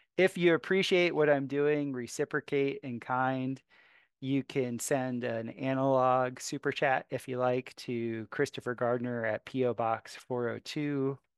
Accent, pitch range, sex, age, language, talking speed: American, 115-140 Hz, male, 30-49, English, 135 wpm